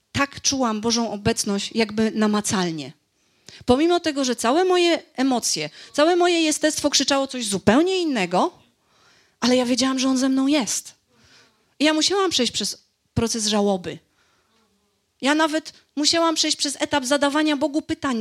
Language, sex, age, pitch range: Polish, female, 30-49, 215-290 Hz